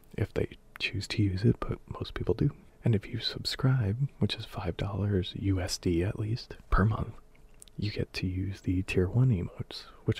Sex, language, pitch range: male, English, 95-110 Hz